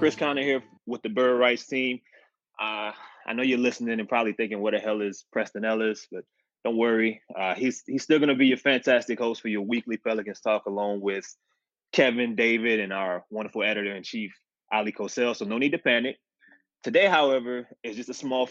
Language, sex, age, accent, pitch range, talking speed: English, male, 20-39, American, 110-160 Hz, 200 wpm